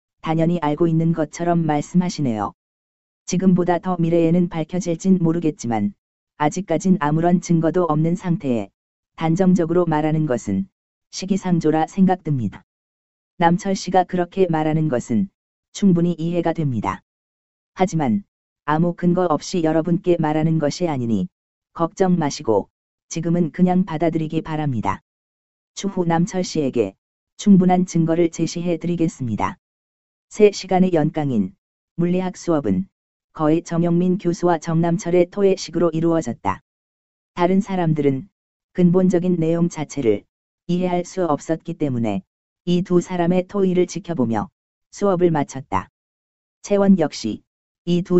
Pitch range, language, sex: 140-180 Hz, Korean, female